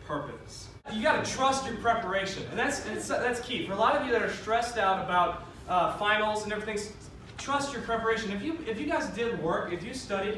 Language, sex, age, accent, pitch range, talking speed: English, male, 20-39, American, 180-235 Hz, 215 wpm